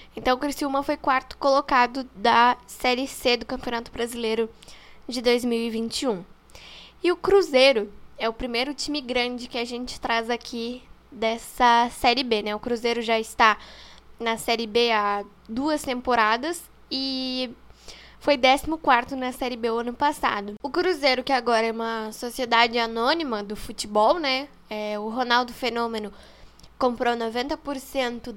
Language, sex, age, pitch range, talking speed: Portuguese, female, 10-29, 225-270 Hz, 140 wpm